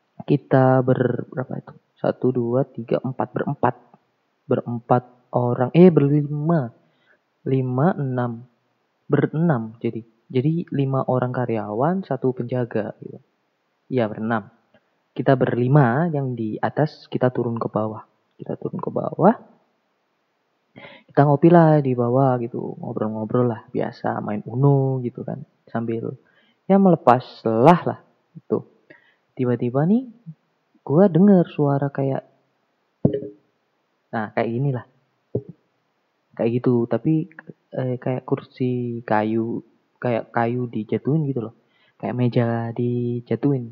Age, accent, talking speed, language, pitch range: 30-49, native, 110 wpm, Indonesian, 115-140 Hz